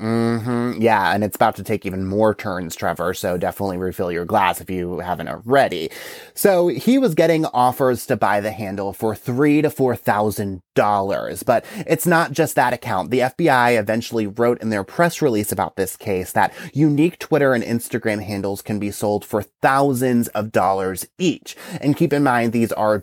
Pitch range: 105-135 Hz